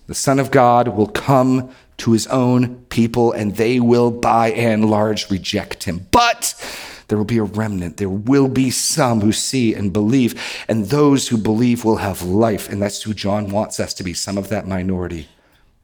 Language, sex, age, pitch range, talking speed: English, male, 40-59, 110-145 Hz, 195 wpm